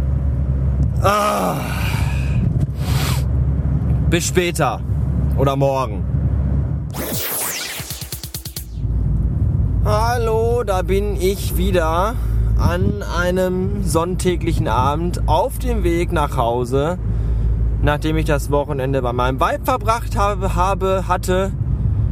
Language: German